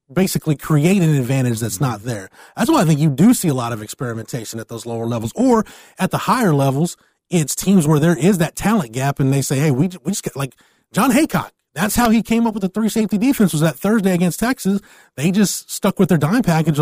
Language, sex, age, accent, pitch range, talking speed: English, male, 30-49, American, 130-180 Hz, 245 wpm